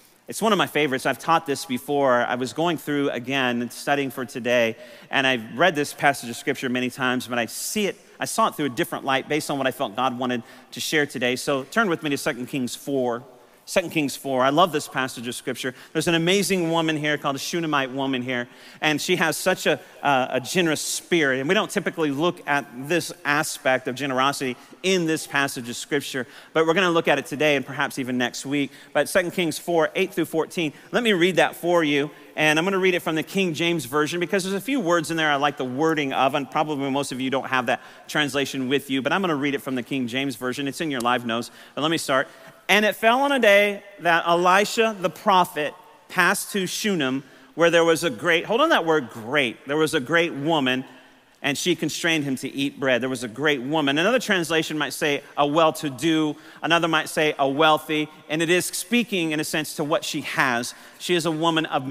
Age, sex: 40-59, male